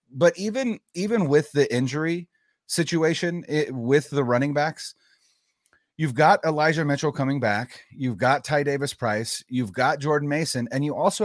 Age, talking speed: 30-49, 155 wpm